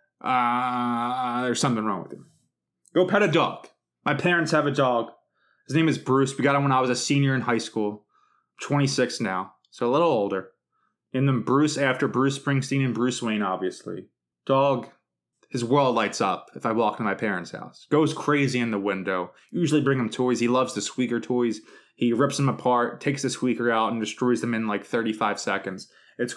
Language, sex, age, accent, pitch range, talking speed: English, male, 20-39, American, 115-160 Hz, 205 wpm